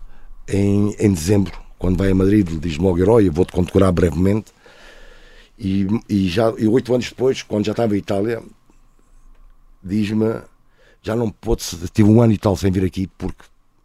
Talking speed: 175 wpm